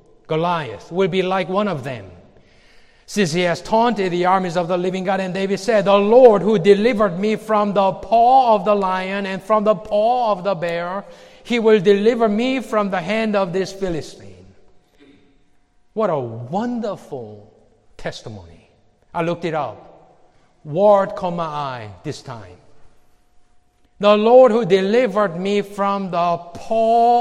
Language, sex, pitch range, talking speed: English, male, 150-210 Hz, 150 wpm